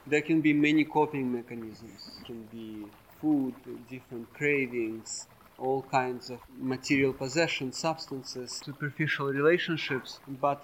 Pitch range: 125-145 Hz